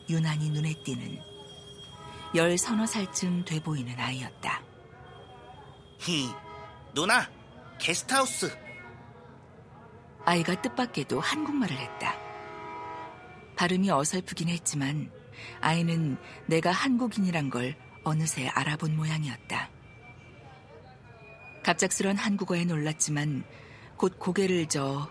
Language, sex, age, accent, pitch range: Korean, female, 50-69, native, 130-180 Hz